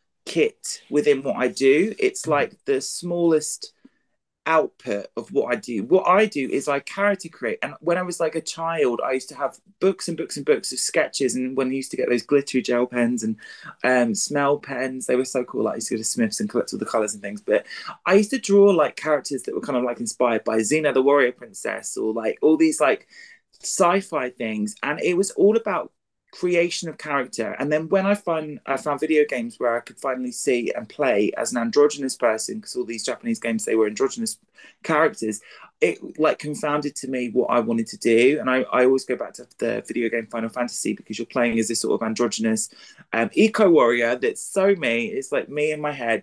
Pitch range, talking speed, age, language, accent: 125-200 Hz, 225 wpm, 20-39, English, British